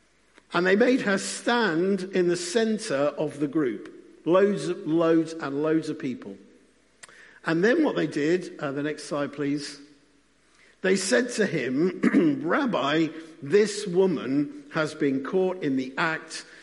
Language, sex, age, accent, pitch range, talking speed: English, male, 50-69, British, 135-195 Hz, 150 wpm